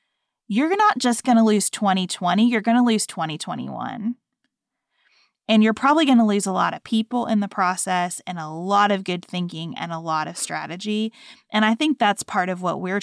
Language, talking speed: English, 205 wpm